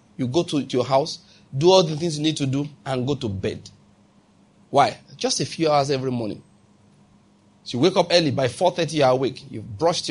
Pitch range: 130-165 Hz